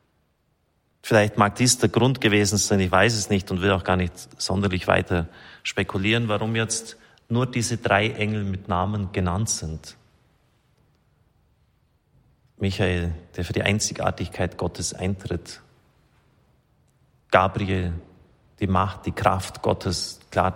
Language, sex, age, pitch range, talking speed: German, male, 30-49, 95-110 Hz, 125 wpm